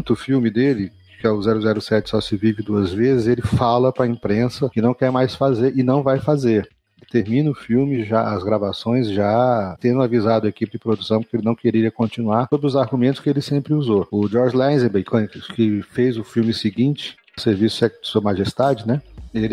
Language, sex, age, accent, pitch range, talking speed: Portuguese, male, 40-59, Brazilian, 110-140 Hz, 205 wpm